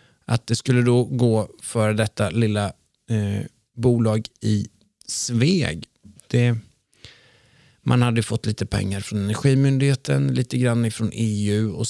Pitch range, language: 110-135 Hz, Swedish